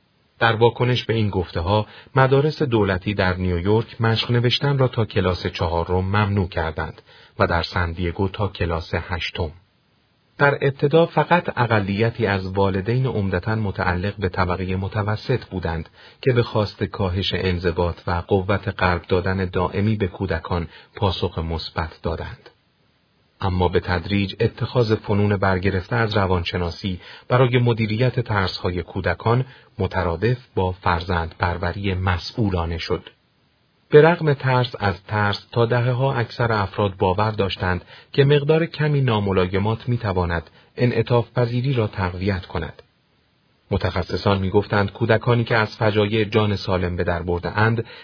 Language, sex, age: Persian, male, 40-59